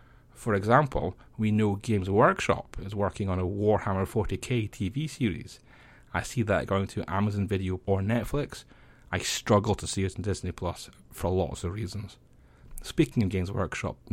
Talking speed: 165 wpm